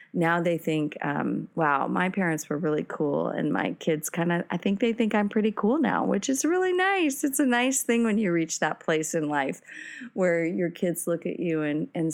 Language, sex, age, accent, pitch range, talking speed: English, female, 30-49, American, 160-210 Hz, 225 wpm